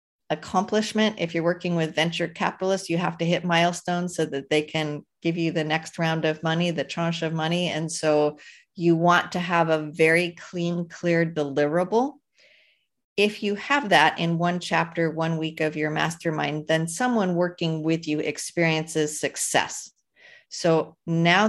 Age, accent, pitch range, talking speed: 40-59, American, 155-190 Hz, 165 wpm